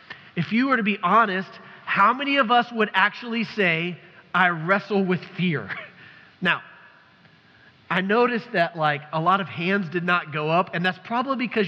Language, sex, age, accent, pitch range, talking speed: English, male, 30-49, American, 145-185 Hz, 175 wpm